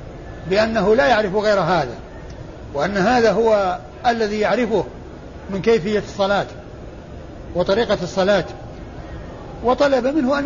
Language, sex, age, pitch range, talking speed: Arabic, male, 60-79, 200-235 Hz, 105 wpm